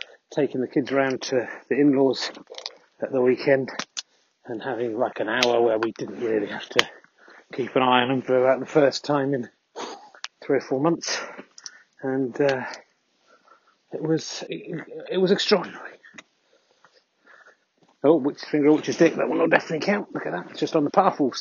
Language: English